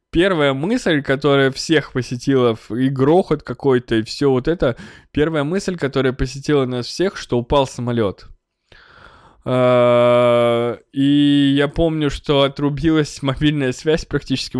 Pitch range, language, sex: 115-140 Hz, Russian, male